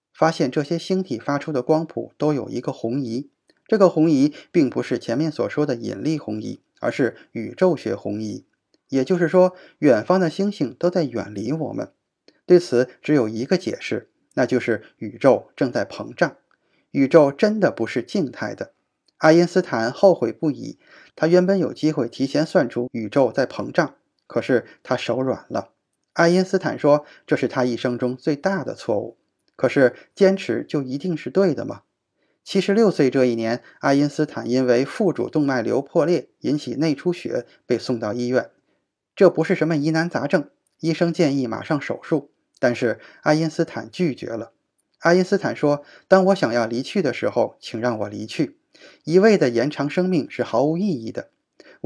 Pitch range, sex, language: 125-180 Hz, male, Chinese